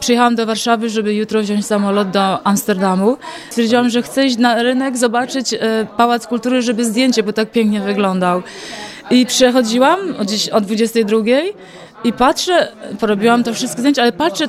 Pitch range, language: 205-240 Hz, Polish